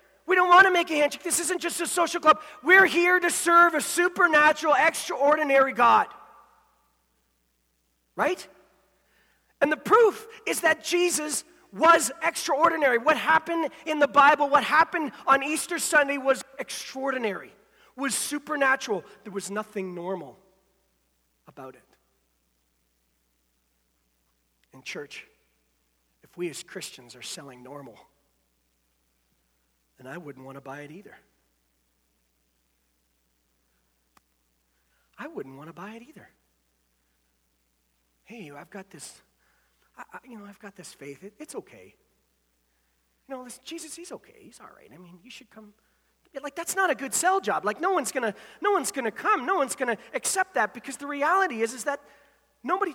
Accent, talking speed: American, 145 wpm